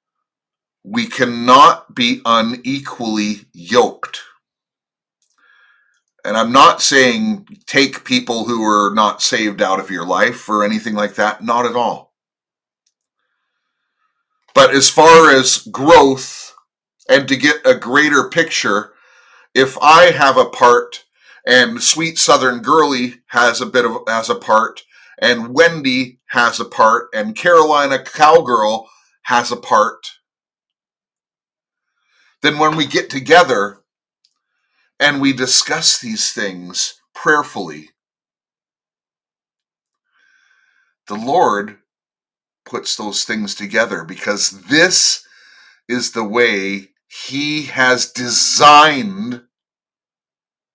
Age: 30-49